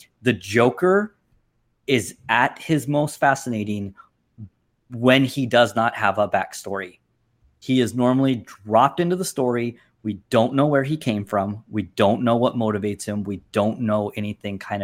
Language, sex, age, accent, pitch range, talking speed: English, male, 30-49, American, 115-160 Hz, 160 wpm